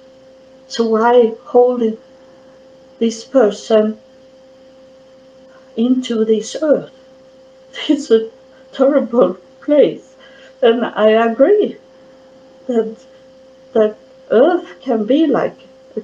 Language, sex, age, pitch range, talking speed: English, female, 60-79, 220-265 Hz, 80 wpm